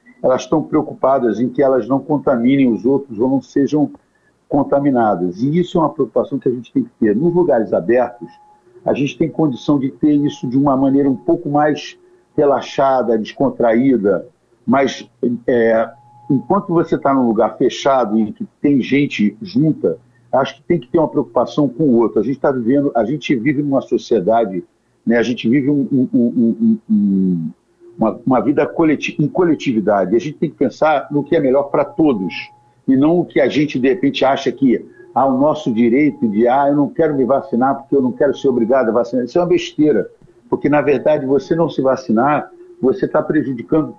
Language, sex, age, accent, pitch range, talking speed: Portuguese, male, 60-79, Brazilian, 130-175 Hz, 190 wpm